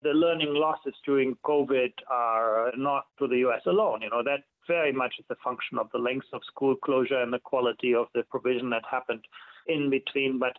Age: 40-59